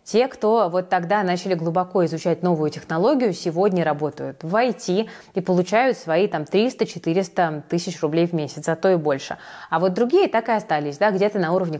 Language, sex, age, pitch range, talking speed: Russian, female, 20-39, 175-215 Hz, 180 wpm